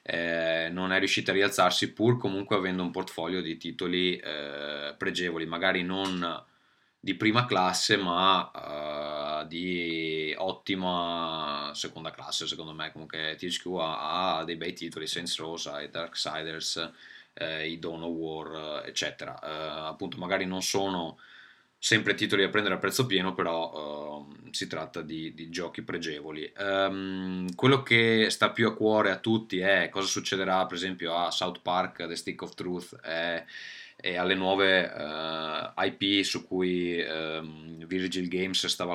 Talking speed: 150 wpm